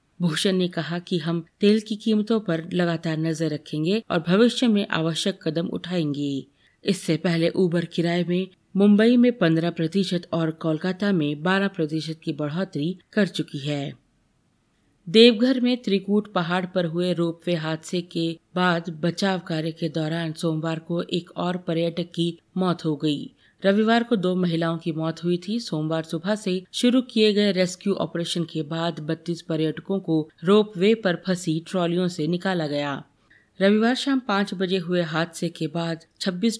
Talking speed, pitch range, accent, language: 160 wpm, 165-200 Hz, native, Hindi